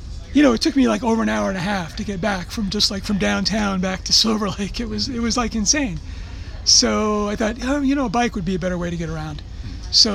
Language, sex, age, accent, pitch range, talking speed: English, male, 30-49, American, 180-220 Hz, 265 wpm